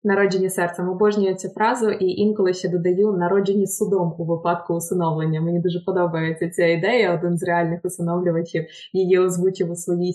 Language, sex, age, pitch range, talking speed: Ukrainian, female, 20-39, 175-205 Hz, 160 wpm